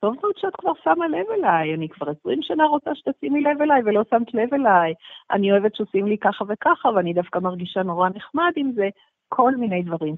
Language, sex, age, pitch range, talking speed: Hebrew, female, 50-69, 155-230 Hz, 205 wpm